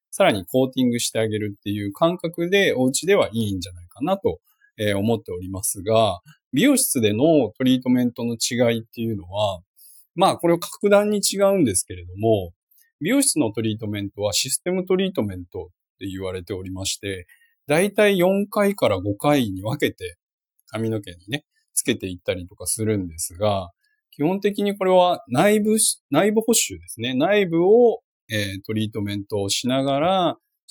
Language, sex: Japanese, male